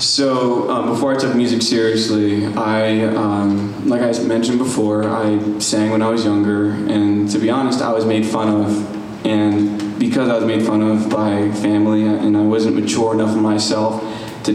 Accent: American